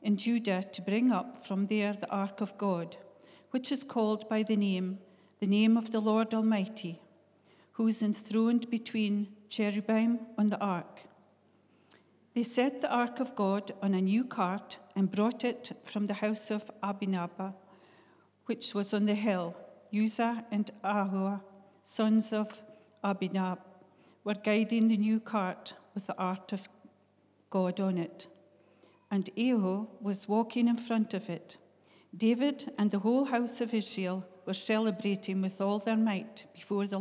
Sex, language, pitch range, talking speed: female, English, 195-225 Hz, 155 wpm